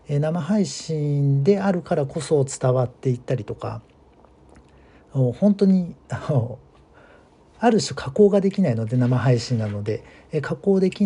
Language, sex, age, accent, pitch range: Japanese, male, 50-69, native, 120-180 Hz